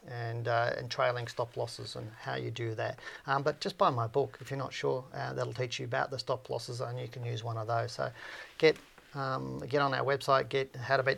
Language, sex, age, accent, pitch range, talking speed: English, male, 40-59, Australian, 120-140 Hz, 250 wpm